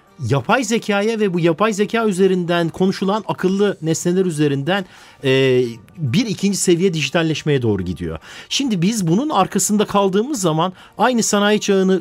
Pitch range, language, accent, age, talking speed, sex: 140-200 Hz, Turkish, native, 50-69, 130 wpm, male